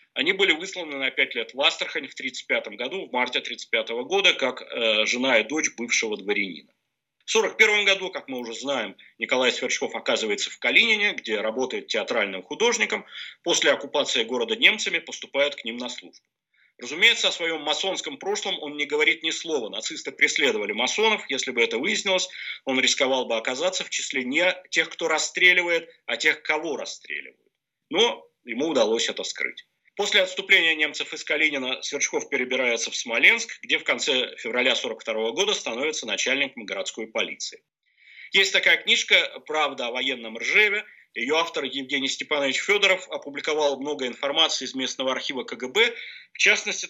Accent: native